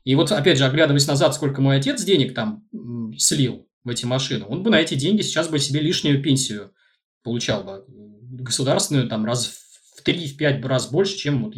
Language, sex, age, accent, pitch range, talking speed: Russian, male, 20-39, native, 120-170 Hz, 190 wpm